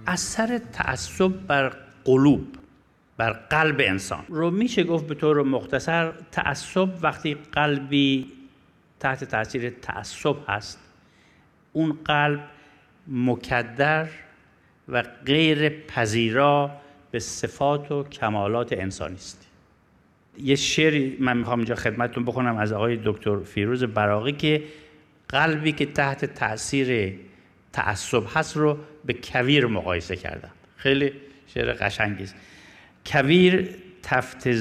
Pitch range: 115-155 Hz